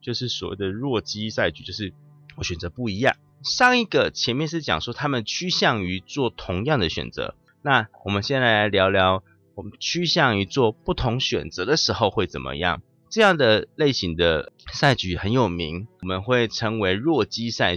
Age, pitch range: 30-49, 95-140 Hz